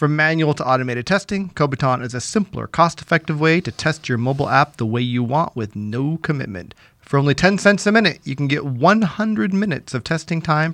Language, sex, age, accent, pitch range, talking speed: English, male, 30-49, American, 120-165 Hz, 200 wpm